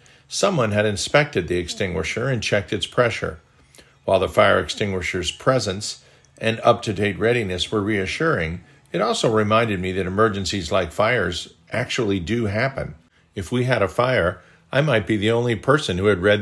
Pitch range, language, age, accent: 95-115 Hz, English, 50-69, American